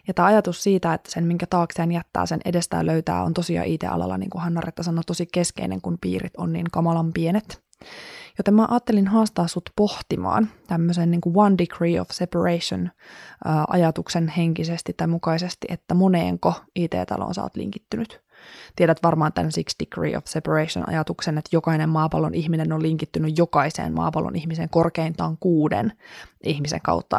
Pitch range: 160-185 Hz